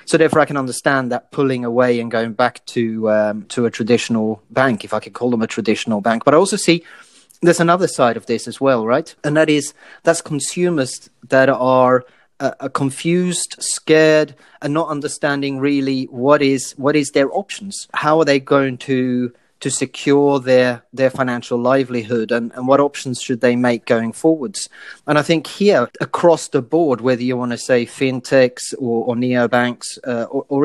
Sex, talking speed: male, 185 wpm